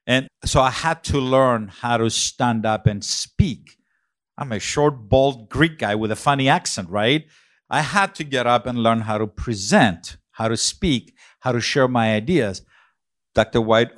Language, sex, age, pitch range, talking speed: English, male, 50-69, 105-130 Hz, 185 wpm